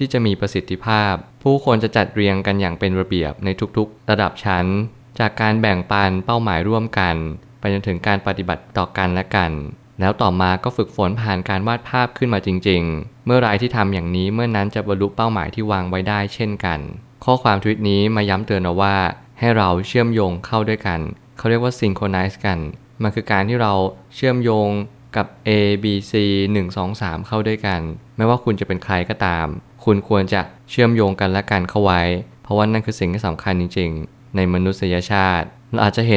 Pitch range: 95-110 Hz